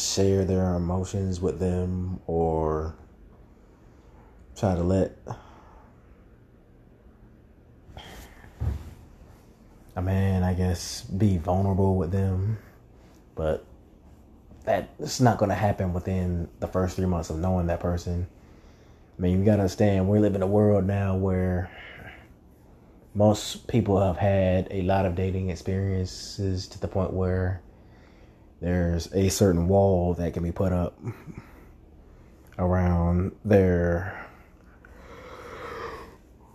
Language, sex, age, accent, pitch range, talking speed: English, male, 30-49, American, 85-95 Hz, 110 wpm